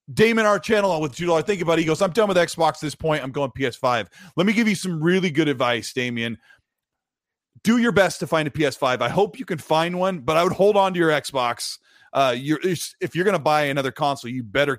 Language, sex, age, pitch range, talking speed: English, male, 30-49, 130-180 Hz, 265 wpm